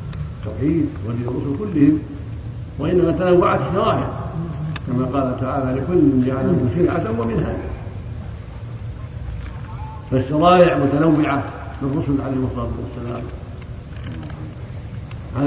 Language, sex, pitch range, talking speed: Arabic, male, 115-145 Hz, 90 wpm